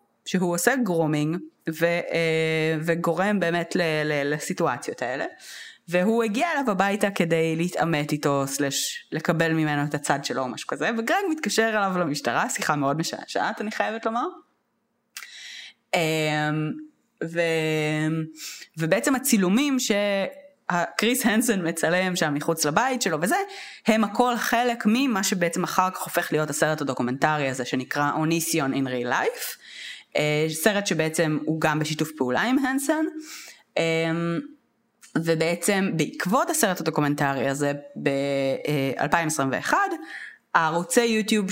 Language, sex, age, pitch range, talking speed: Hebrew, female, 20-39, 150-215 Hz, 115 wpm